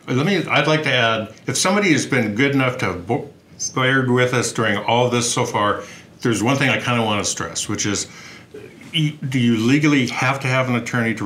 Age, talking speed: 50-69, 215 wpm